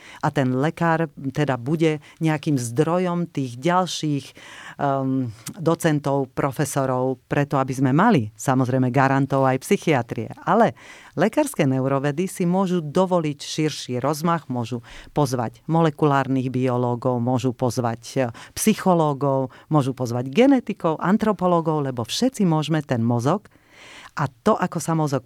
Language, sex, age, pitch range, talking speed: Slovak, female, 40-59, 135-165 Hz, 115 wpm